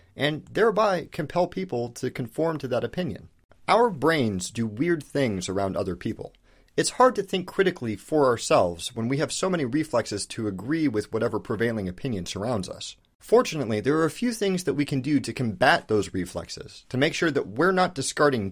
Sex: male